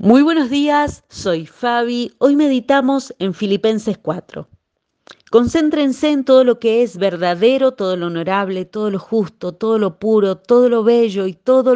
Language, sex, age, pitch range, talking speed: Spanish, female, 40-59, 180-245 Hz, 160 wpm